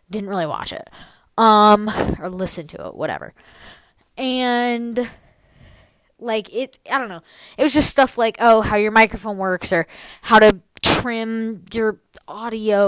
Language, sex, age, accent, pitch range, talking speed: English, female, 20-39, American, 190-235 Hz, 150 wpm